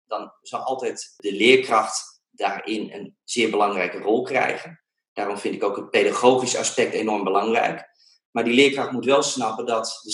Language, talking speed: Dutch, 165 wpm